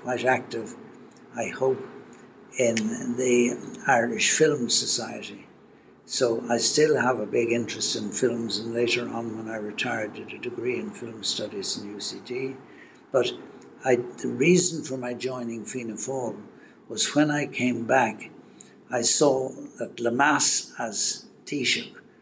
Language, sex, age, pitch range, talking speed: English, male, 60-79, 115-125 Hz, 140 wpm